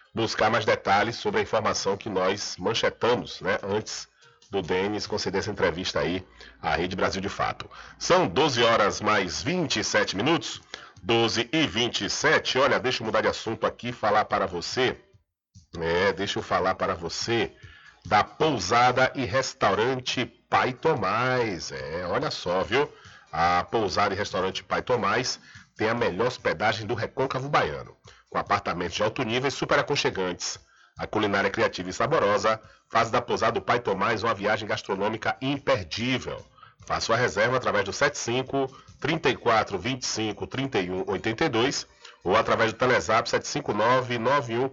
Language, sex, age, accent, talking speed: Portuguese, male, 40-59, Brazilian, 150 wpm